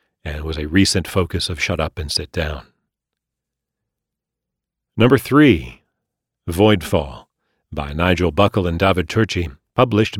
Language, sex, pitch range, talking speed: English, male, 85-120 Hz, 125 wpm